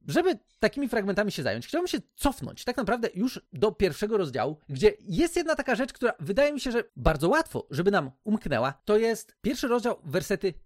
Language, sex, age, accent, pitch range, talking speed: Polish, male, 40-59, native, 155-235 Hz, 190 wpm